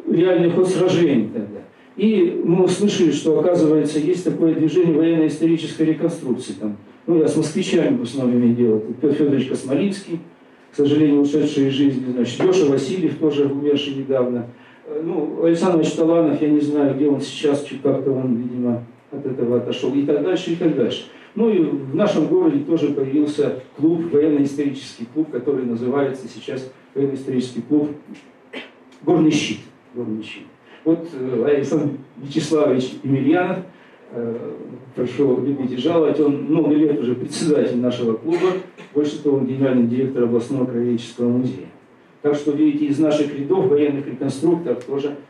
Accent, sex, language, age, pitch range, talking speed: native, male, Russian, 50-69, 130-160 Hz, 140 wpm